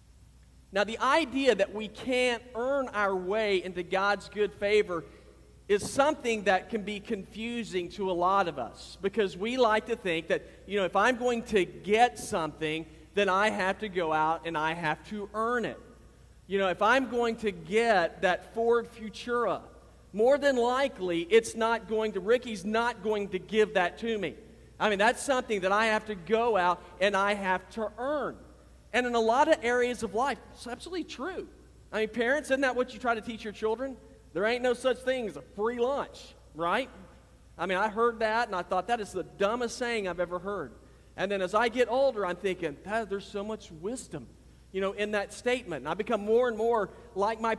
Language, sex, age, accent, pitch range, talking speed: English, male, 40-59, American, 190-235 Hz, 205 wpm